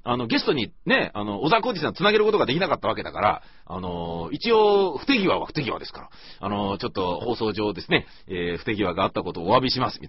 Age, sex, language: 40-59, male, Japanese